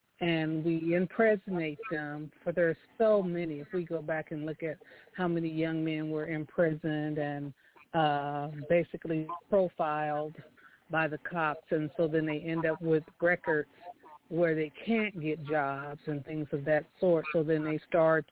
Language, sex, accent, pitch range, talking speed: English, female, American, 150-175 Hz, 165 wpm